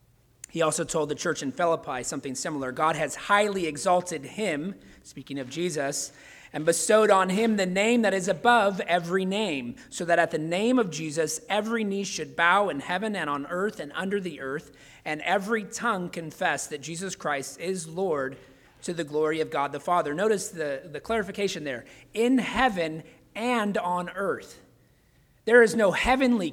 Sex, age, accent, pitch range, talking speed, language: male, 30-49, American, 130-180 Hz, 175 wpm, English